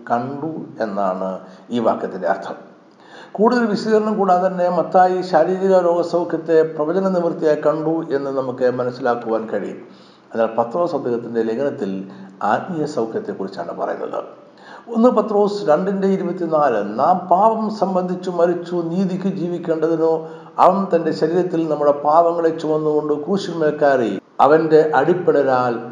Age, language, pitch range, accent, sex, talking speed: 60-79, Malayalam, 130-180 Hz, native, male, 95 wpm